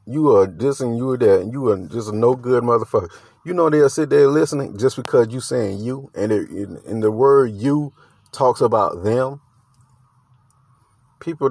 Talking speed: 190 wpm